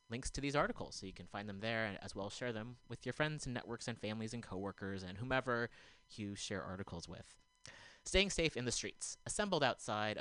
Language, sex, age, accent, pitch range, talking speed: English, male, 30-49, American, 95-125 Hz, 220 wpm